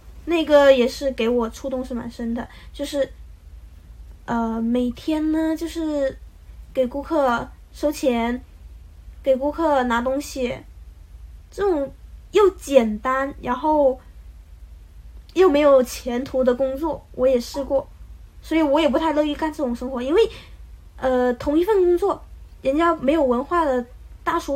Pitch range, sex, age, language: 240-290 Hz, female, 20-39, Chinese